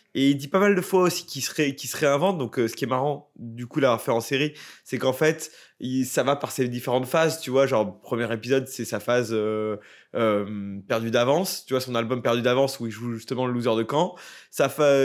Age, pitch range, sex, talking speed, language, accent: 20-39, 120-160 Hz, male, 250 wpm, French, French